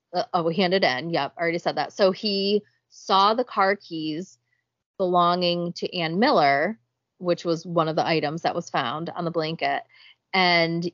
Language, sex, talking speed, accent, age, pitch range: English, female, 180 wpm, American, 30-49, 160-190 Hz